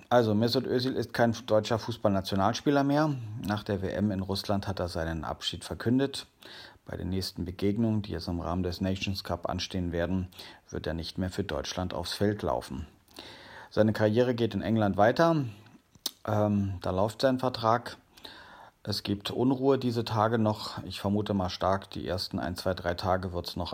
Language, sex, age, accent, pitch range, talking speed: German, male, 40-59, German, 95-115 Hz, 175 wpm